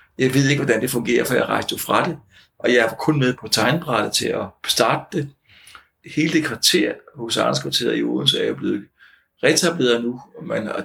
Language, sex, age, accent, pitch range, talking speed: Danish, male, 60-79, native, 110-150 Hz, 215 wpm